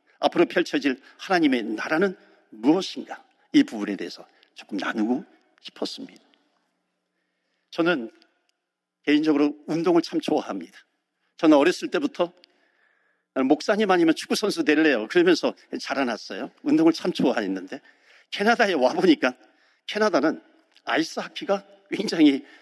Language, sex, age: Korean, male, 50-69